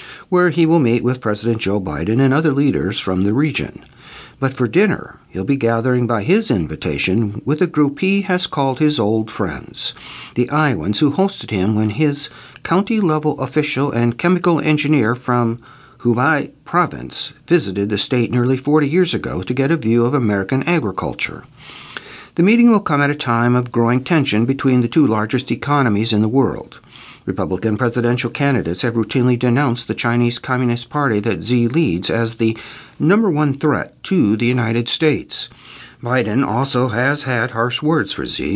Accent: American